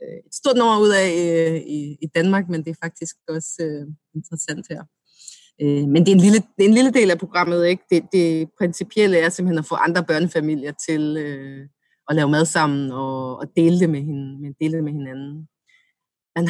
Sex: female